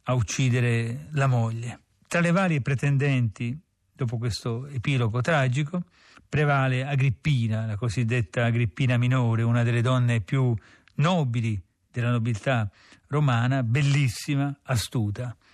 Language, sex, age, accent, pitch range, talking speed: Italian, male, 40-59, native, 120-145 Hz, 110 wpm